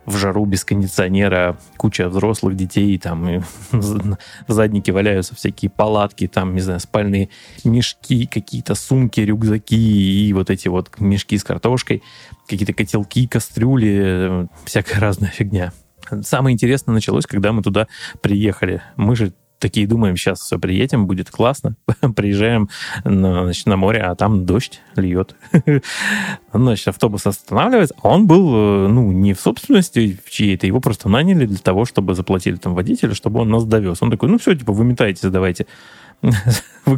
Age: 20-39